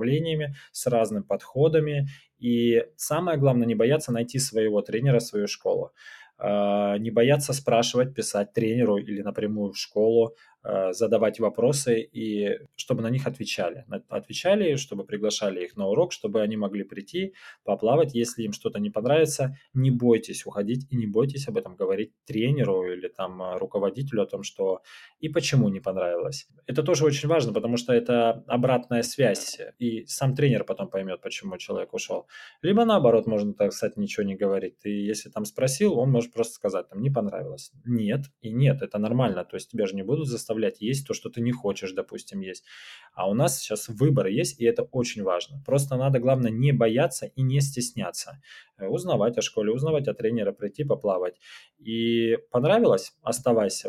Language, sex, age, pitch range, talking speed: Russian, male, 20-39, 110-150 Hz, 165 wpm